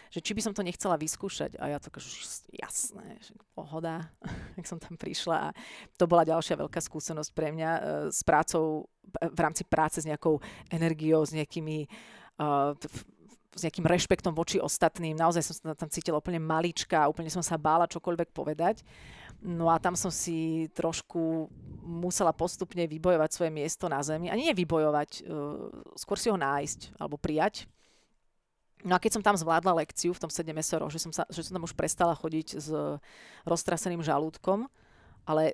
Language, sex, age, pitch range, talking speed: Slovak, female, 30-49, 155-175 Hz, 175 wpm